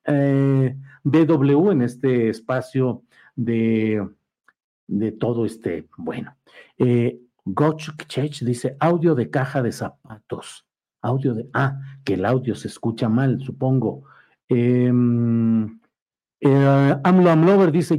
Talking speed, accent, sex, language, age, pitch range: 105 wpm, Mexican, male, Spanish, 50-69, 120-155 Hz